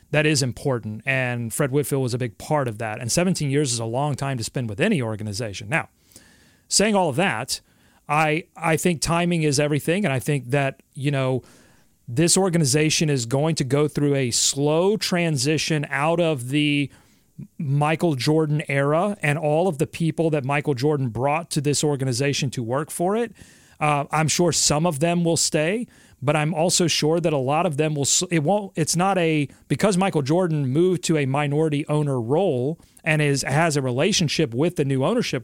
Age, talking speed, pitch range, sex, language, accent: 30-49, 195 wpm, 135-165 Hz, male, English, American